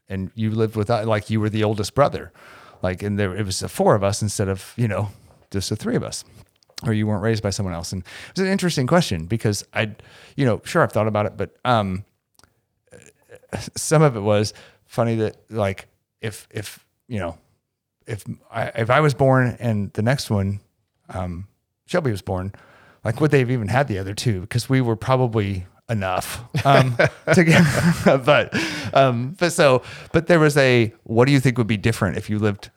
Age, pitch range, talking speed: 30-49, 100-125 Hz, 210 wpm